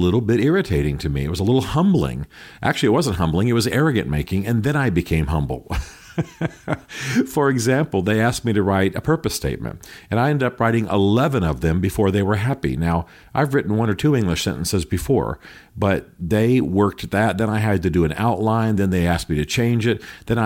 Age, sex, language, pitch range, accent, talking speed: 50-69, male, English, 85-115 Hz, American, 215 wpm